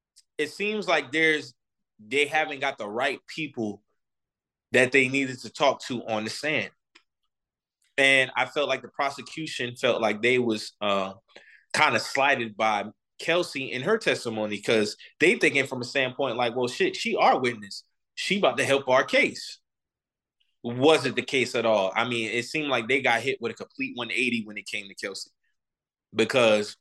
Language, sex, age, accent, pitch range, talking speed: English, male, 20-39, American, 115-130 Hz, 175 wpm